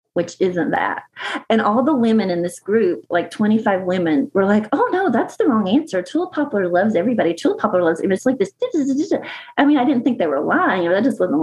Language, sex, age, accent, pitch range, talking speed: English, female, 30-49, American, 205-290 Hz, 235 wpm